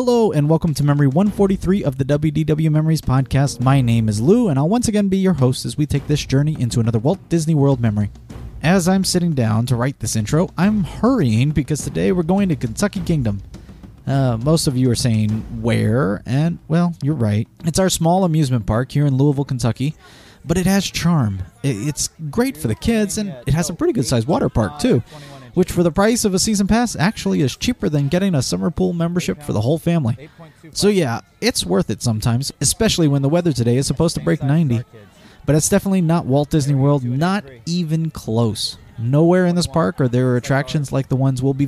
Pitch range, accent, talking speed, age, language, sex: 125-170 Hz, American, 215 wpm, 30-49, English, male